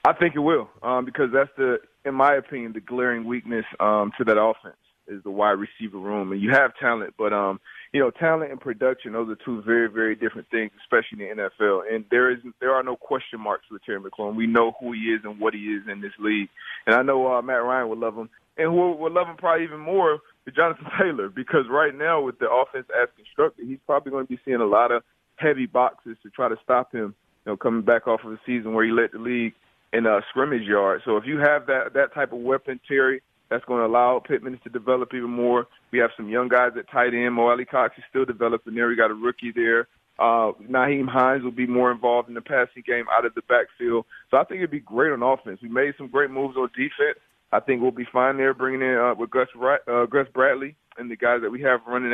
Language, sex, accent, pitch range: English, male, American, 115-135 Hz